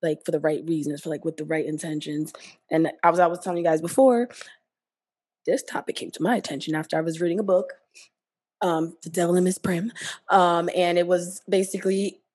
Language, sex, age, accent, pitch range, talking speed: English, female, 20-39, American, 175-220 Hz, 210 wpm